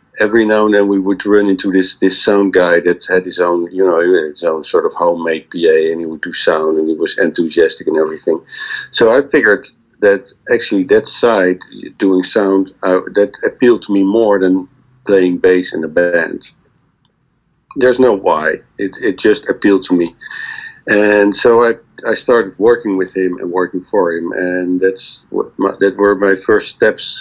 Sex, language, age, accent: male, English, 50-69, Dutch